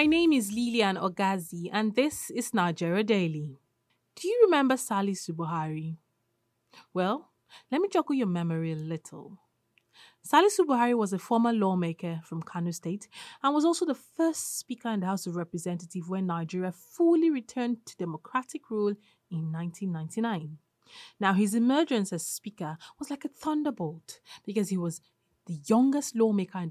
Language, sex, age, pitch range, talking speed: English, female, 20-39, 170-255 Hz, 155 wpm